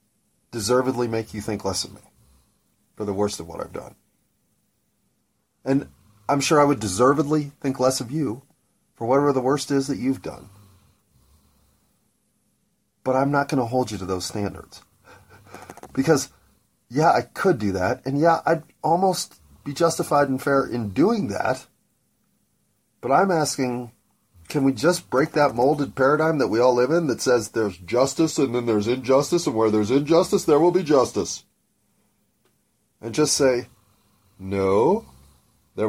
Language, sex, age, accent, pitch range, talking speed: English, male, 40-59, American, 105-145 Hz, 160 wpm